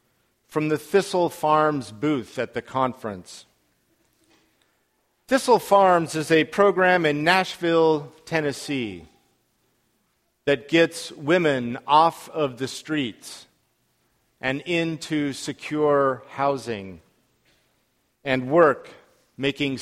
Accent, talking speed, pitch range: American, 90 wpm, 120-160 Hz